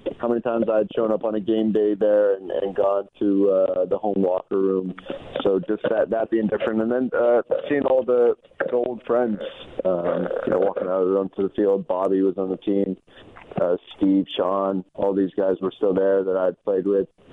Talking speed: 210 wpm